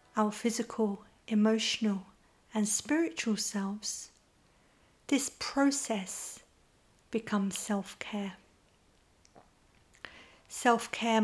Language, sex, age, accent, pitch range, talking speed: English, female, 50-69, British, 210-235 Hz, 60 wpm